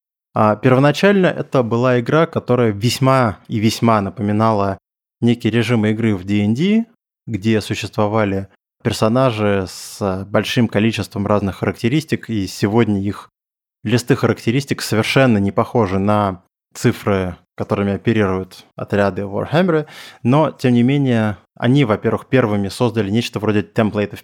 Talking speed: 115 wpm